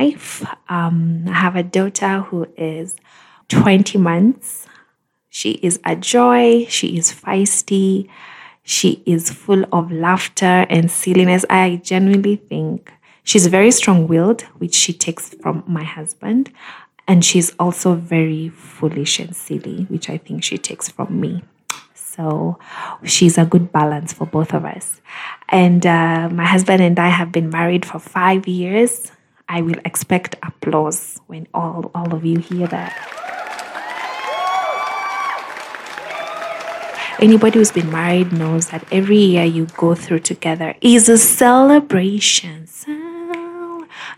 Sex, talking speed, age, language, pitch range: female, 130 wpm, 20-39, English, 170-205 Hz